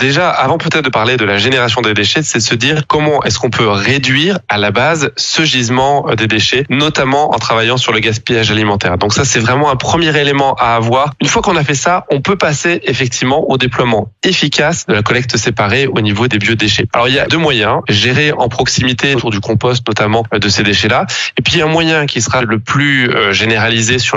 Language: French